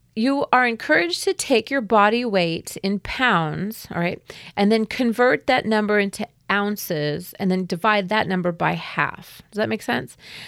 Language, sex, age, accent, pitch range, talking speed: English, female, 30-49, American, 180-220 Hz, 170 wpm